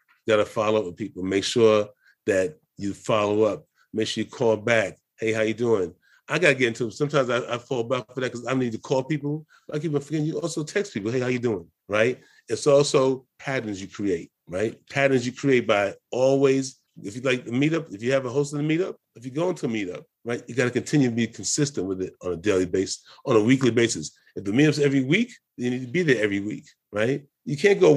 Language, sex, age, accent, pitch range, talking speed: English, male, 30-49, American, 110-145 Hz, 245 wpm